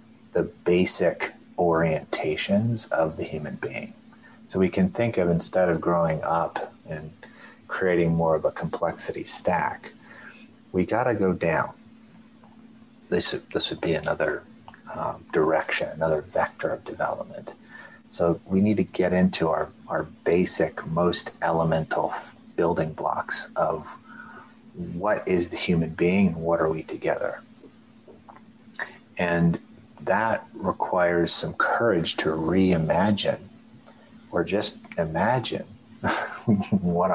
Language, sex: English, male